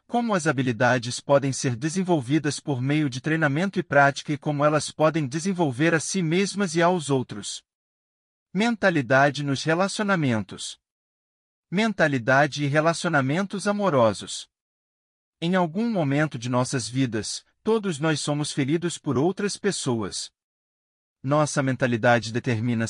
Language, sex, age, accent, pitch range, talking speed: Portuguese, male, 50-69, Brazilian, 135-180 Hz, 120 wpm